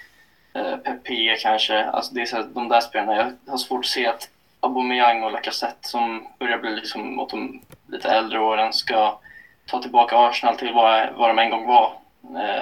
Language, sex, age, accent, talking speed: Swedish, male, 10-29, native, 185 wpm